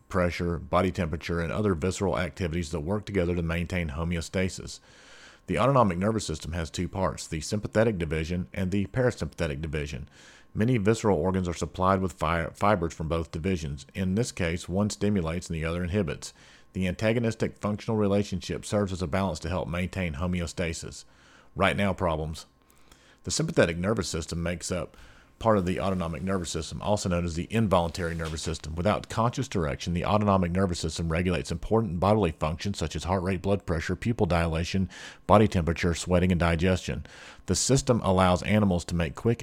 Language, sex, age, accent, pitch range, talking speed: English, male, 40-59, American, 85-100 Hz, 170 wpm